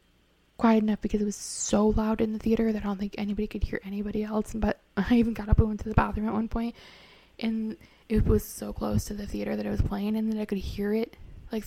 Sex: female